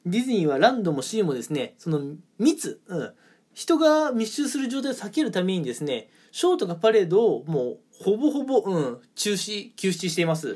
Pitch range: 180-255 Hz